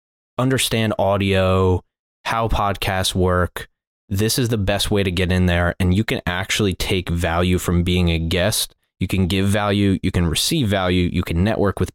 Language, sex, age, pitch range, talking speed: English, male, 20-39, 90-100 Hz, 180 wpm